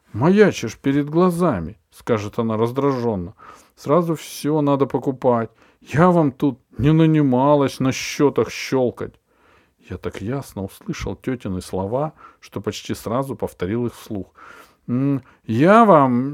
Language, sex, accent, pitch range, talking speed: Russian, male, native, 110-150 Hz, 120 wpm